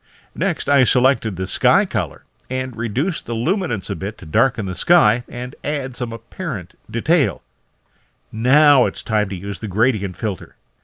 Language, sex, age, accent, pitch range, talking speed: English, male, 50-69, American, 100-135 Hz, 160 wpm